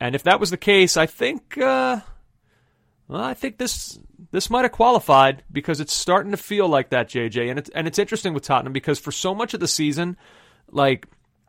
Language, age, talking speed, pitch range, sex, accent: English, 30-49, 210 wpm, 125-165 Hz, male, American